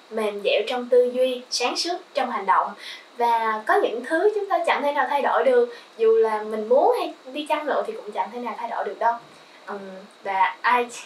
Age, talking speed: 10-29, 230 wpm